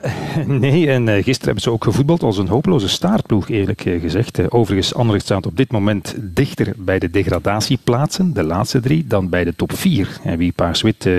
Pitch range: 100-130 Hz